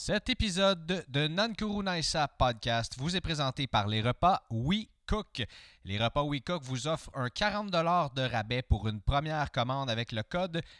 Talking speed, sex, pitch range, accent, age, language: 160 wpm, male, 105-140 Hz, Canadian, 30-49, English